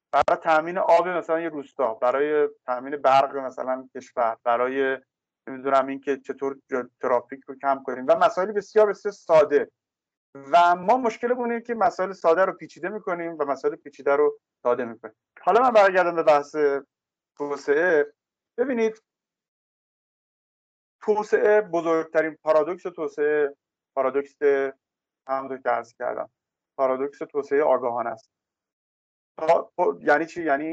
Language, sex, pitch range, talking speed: Persian, male, 135-180 Hz, 125 wpm